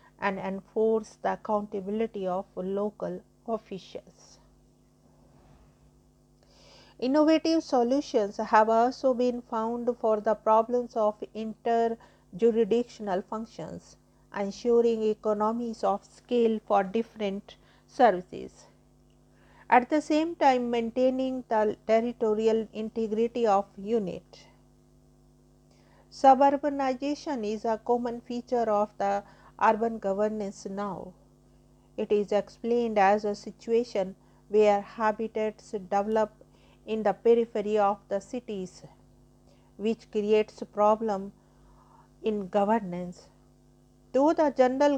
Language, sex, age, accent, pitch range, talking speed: English, female, 50-69, Indian, 200-235 Hz, 95 wpm